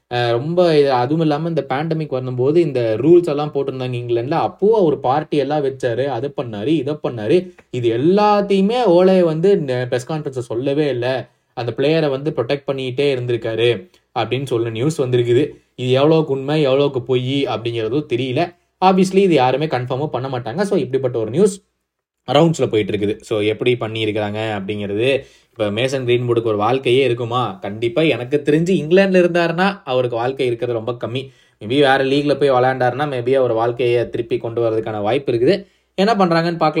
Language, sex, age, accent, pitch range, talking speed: Tamil, male, 20-39, native, 120-160 Hz, 150 wpm